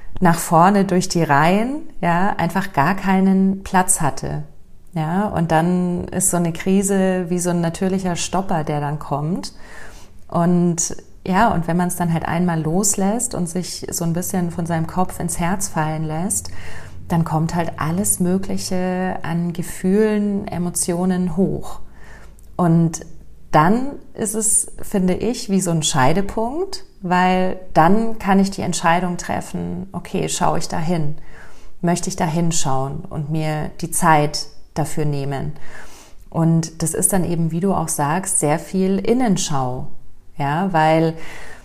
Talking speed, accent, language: 145 wpm, German, German